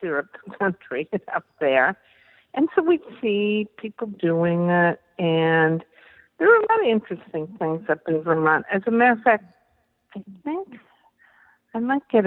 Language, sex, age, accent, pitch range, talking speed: English, female, 60-79, American, 160-215 Hz, 160 wpm